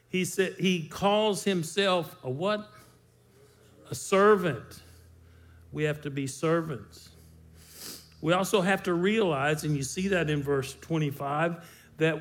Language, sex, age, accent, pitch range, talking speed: English, male, 50-69, American, 125-175 Hz, 125 wpm